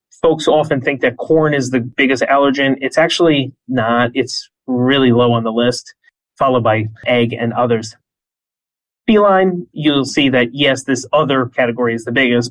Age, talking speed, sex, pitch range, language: 30-49, 165 wpm, male, 125-175 Hz, English